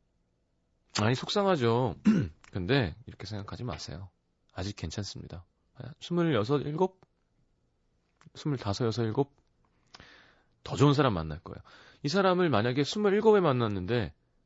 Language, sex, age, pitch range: Korean, male, 30-49, 95-140 Hz